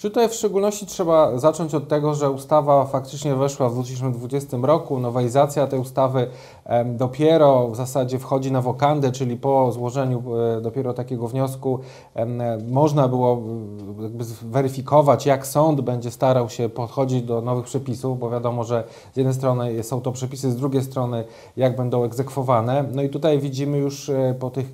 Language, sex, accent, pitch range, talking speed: Polish, male, native, 125-140 Hz, 160 wpm